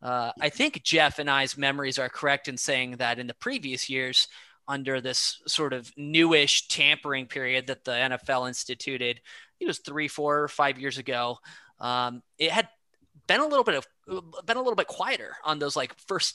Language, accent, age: English, American, 20-39